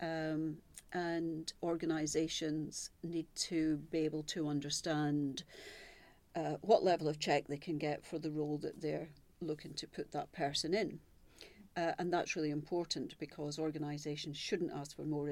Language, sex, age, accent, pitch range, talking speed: English, female, 40-59, British, 150-170 Hz, 155 wpm